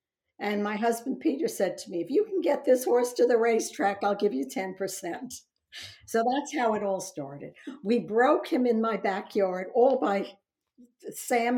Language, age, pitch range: English, 60-79, 180-235 Hz